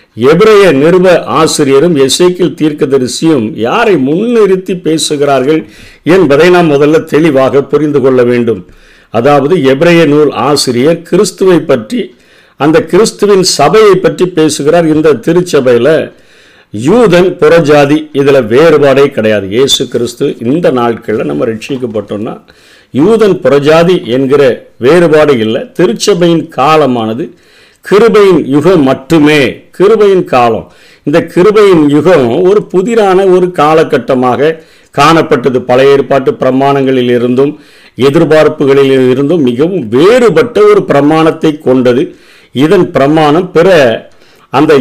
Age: 50-69